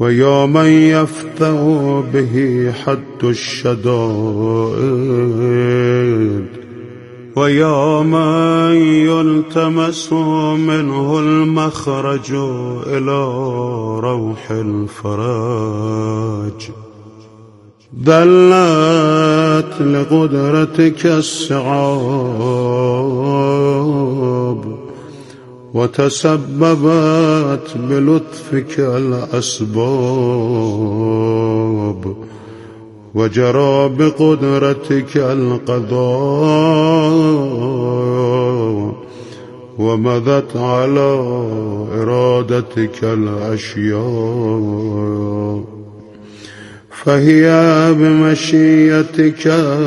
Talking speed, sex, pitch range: 35 wpm, male, 115-155 Hz